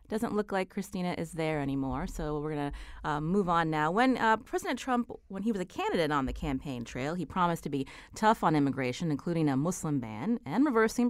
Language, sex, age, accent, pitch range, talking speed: English, female, 30-49, American, 150-220 Hz, 215 wpm